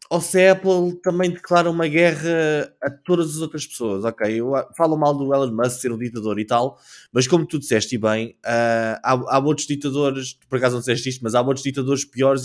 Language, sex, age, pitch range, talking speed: Portuguese, male, 20-39, 130-165 Hz, 220 wpm